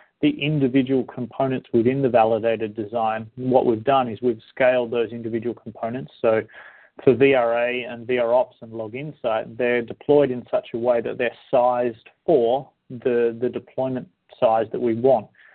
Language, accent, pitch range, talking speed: English, Australian, 115-130 Hz, 160 wpm